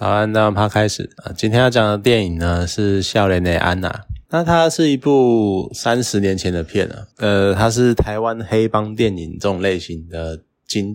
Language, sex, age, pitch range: Chinese, male, 20-39, 95-120 Hz